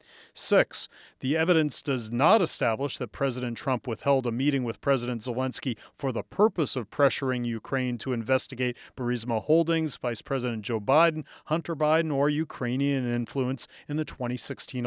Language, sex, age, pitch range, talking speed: English, male, 40-59, 125-150 Hz, 150 wpm